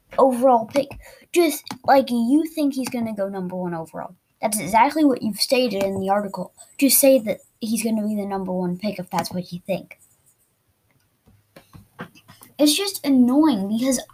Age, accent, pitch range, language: 10-29, American, 220-295 Hz, English